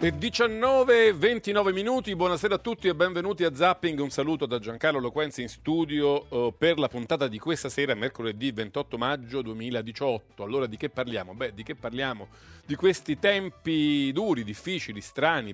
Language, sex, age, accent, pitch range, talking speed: Italian, male, 40-59, native, 125-170 Hz, 160 wpm